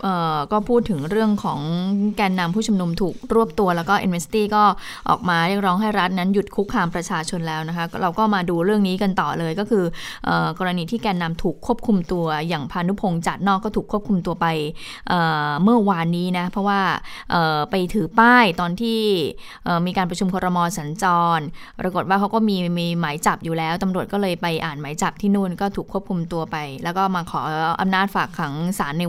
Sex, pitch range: female, 170-210 Hz